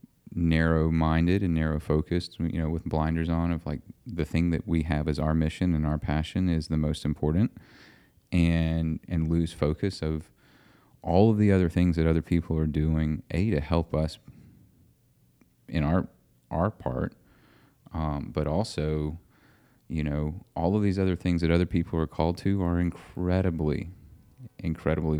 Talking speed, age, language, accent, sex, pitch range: 160 wpm, 30-49, English, American, male, 80-90 Hz